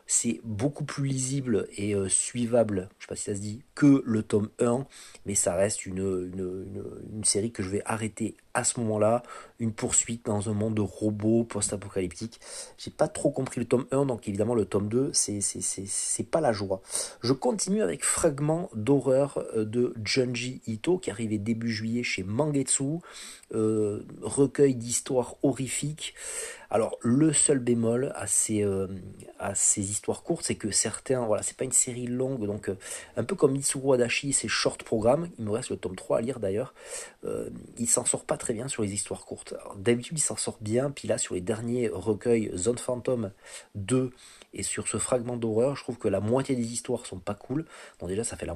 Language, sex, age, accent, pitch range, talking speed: French, male, 40-59, French, 105-130 Hz, 210 wpm